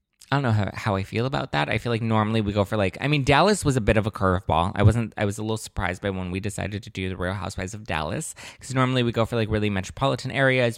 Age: 20-39